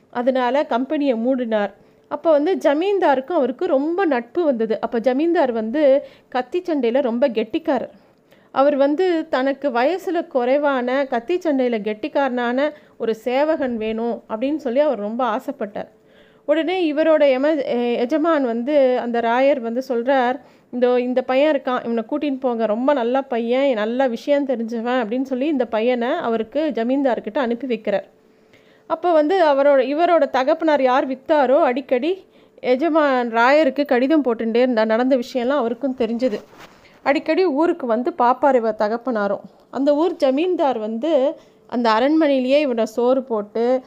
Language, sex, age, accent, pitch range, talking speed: Tamil, female, 30-49, native, 230-295 Hz, 125 wpm